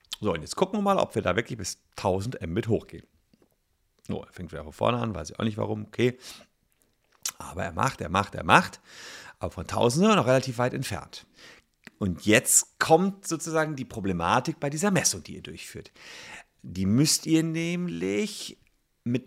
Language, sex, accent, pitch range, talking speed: German, male, German, 95-140 Hz, 185 wpm